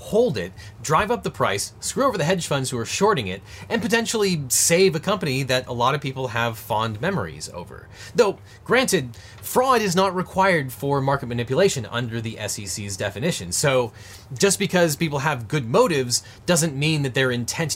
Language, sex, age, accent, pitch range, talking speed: English, male, 30-49, American, 110-175 Hz, 180 wpm